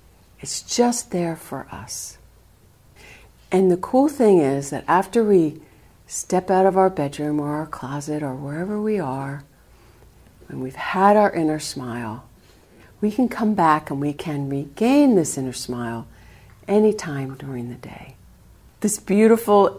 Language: English